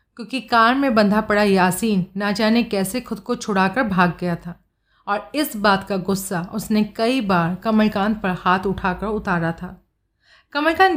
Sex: female